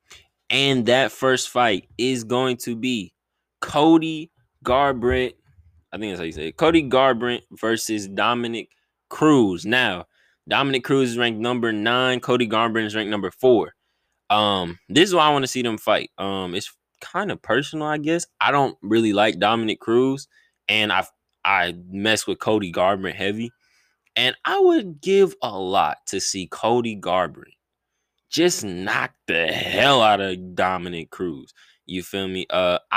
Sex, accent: male, American